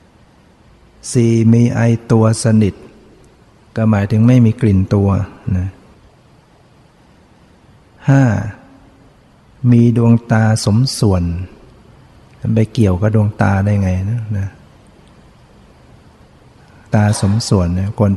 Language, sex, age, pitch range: Thai, male, 60-79, 100-115 Hz